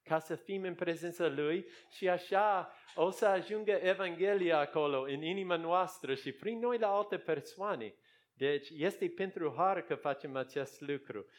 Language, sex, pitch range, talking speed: Romanian, male, 145-195 Hz, 160 wpm